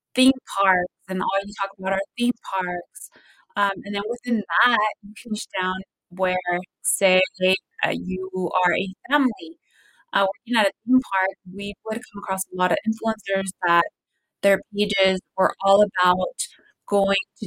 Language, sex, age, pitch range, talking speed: English, female, 20-39, 185-225 Hz, 160 wpm